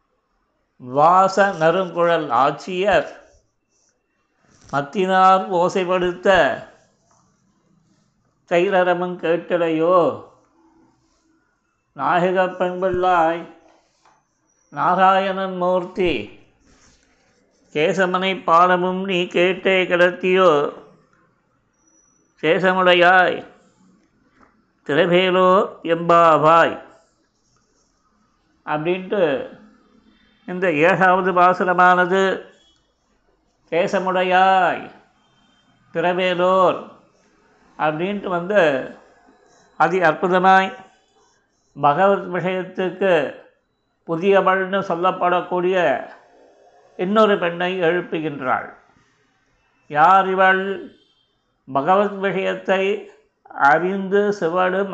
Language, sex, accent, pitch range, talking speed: Tamil, male, native, 175-190 Hz, 45 wpm